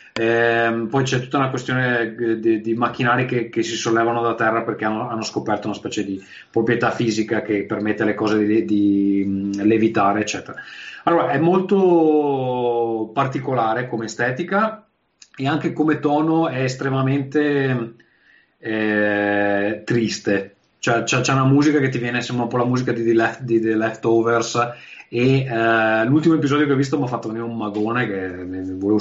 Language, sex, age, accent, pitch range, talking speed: Italian, male, 30-49, native, 105-130 Hz, 165 wpm